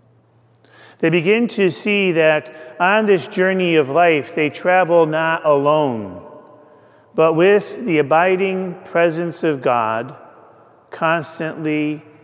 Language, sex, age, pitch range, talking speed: English, male, 40-59, 140-185 Hz, 110 wpm